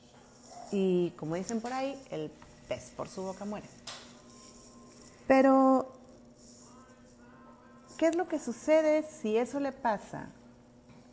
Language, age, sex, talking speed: Spanish, 40-59, female, 115 wpm